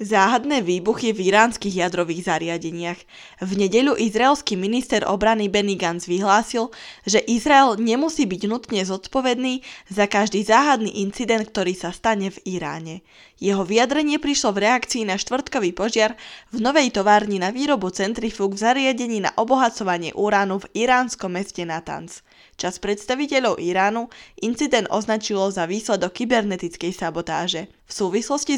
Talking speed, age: 130 wpm, 10-29